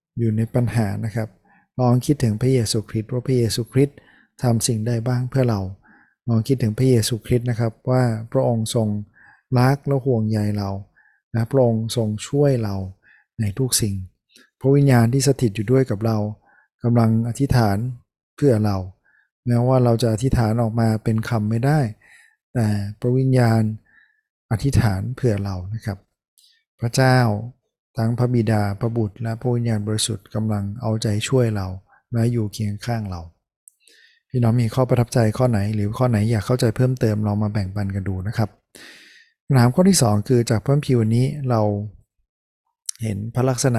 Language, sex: Thai, male